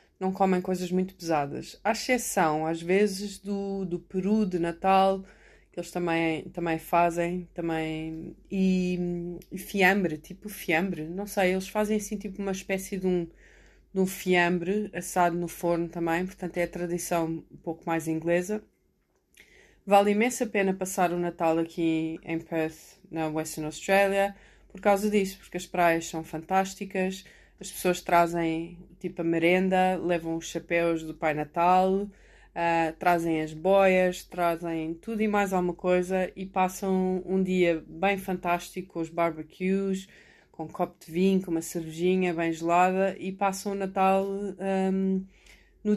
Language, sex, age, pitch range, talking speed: Portuguese, female, 20-39, 170-195 Hz, 150 wpm